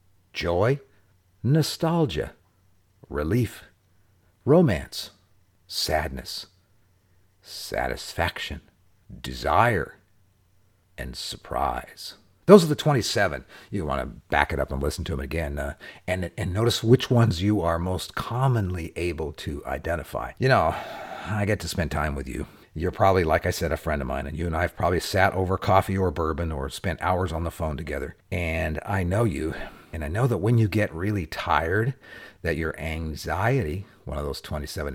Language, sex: English, male